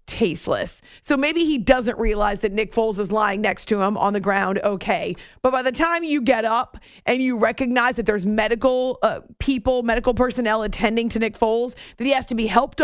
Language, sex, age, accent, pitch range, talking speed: English, female, 30-49, American, 200-245 Hz, 210 wpm